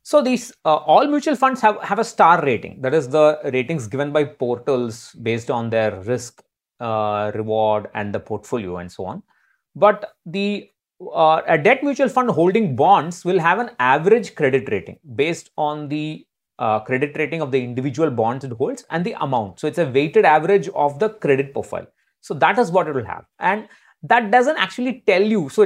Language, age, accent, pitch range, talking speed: English, 30-49, Indian, 120-175 Hz, 195 wpm